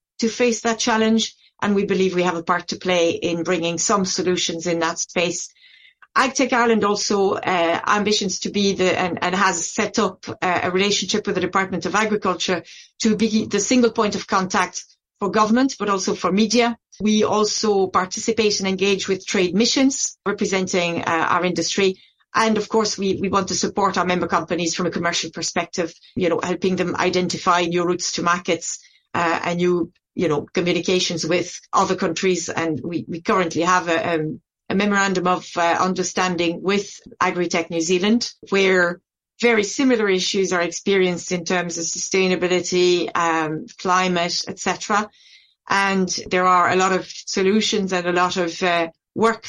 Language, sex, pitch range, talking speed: English, female, 175-210 Hz, 170 wpm